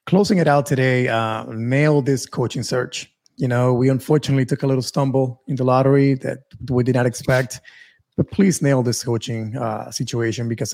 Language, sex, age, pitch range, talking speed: English, male, 30-49, 120-140 Hz, 185 wpm